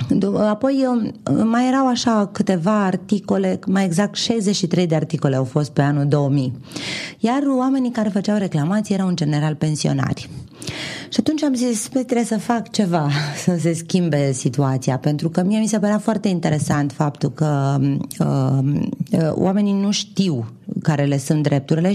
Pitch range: 145-195 Hz